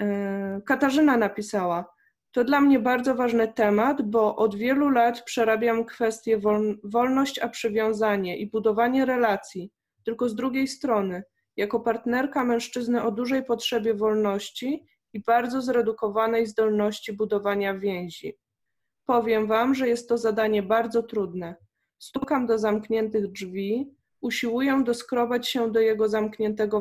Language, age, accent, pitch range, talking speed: Polish, 20-39, native, 210-240 Hz, 125 wpm